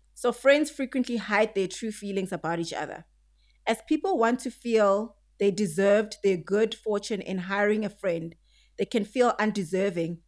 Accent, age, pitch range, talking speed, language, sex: South African, 30-49, 180-235 Hz, 165 wpm, English, female